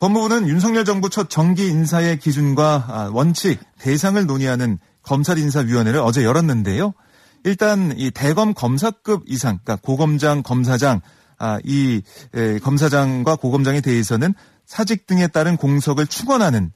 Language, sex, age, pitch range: Korean, male, 30-49, 130-185 Hz